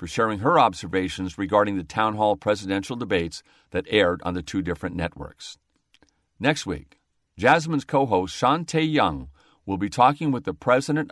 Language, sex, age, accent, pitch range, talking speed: English, male, 50-69, American, 95-135 Hz, 155 wpm